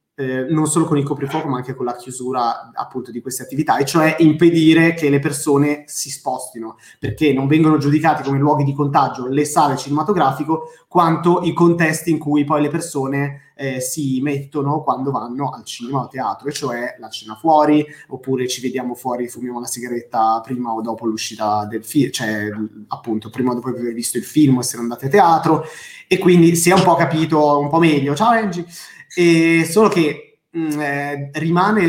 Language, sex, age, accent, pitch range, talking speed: Italian, male, 20-39, native, 125-155 Hz, 190 wpm